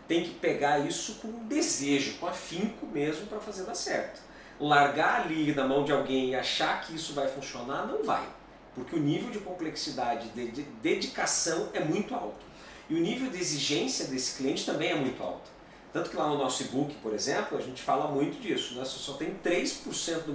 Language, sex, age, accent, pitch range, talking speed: Portuguese, male, 40-59, Brazilian, 135-180 Hz, 195 wpm